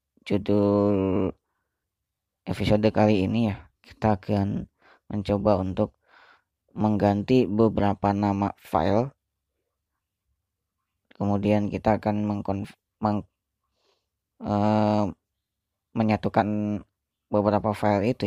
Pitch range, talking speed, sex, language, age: 100-105 Hz, 75 wpm, female, Indonesian, 20-39